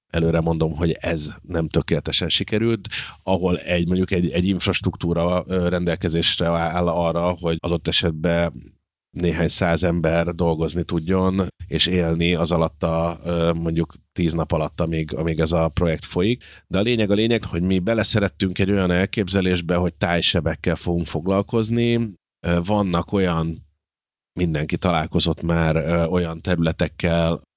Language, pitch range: Hungarian, 80-95 Hz